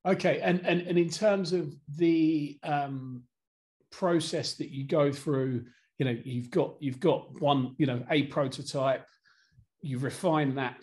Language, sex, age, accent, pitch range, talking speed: English, male, 40-59, British, 125-150 Hz, 155 wpm